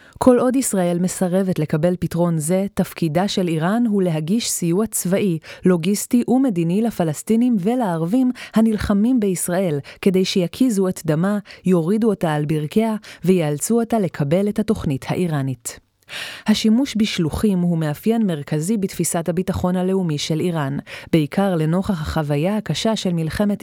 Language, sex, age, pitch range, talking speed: Hebrew, female, 30-49, 165-215 Hz, 125 wpm